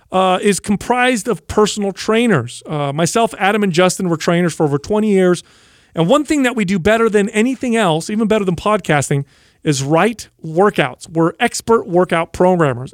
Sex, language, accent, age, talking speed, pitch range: male, English, American, 40-59, 175 wpm, 155-205 Hz